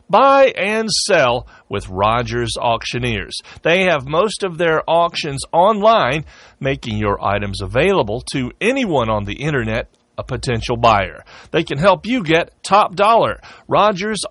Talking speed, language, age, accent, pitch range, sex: 140 wpm, English, 40-59, American, 115-190 Hz, male